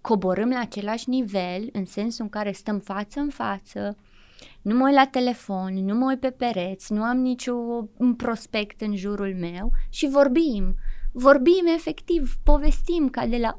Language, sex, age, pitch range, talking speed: Romanian, female, 20-39, 195-265 Hz, 165 wpm